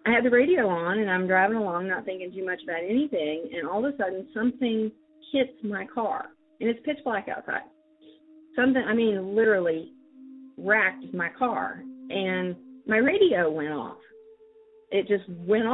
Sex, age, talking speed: female, 40-59, 170 wpm